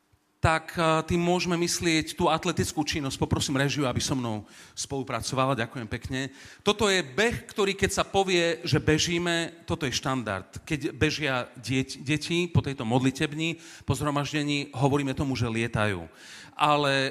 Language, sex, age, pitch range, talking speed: Slovak, male, 40-59, 130-170 Hz, 140 wpm